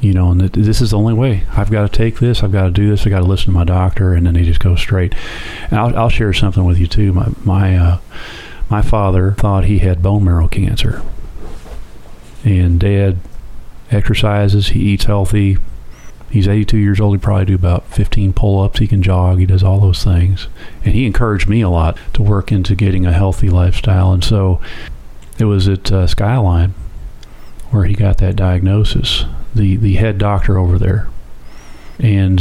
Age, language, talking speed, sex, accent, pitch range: 40-59, English, 195 wpm, male, American, 90-105 Hz